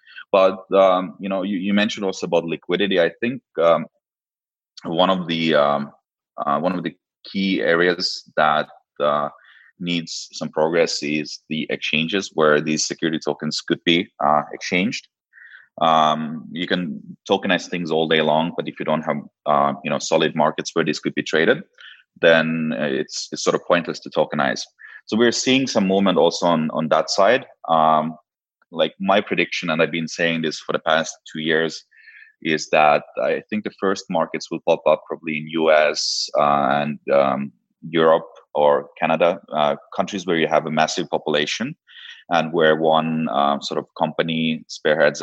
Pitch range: 75-90 Hz